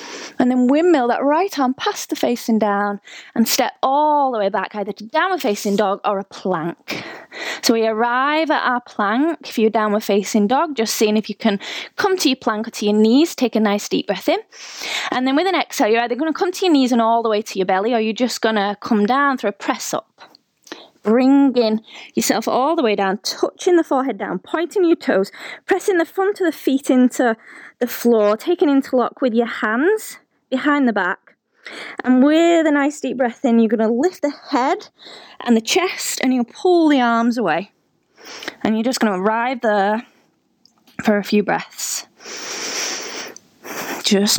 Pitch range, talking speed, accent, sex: 220-315 Hz, 195 wpm, British, female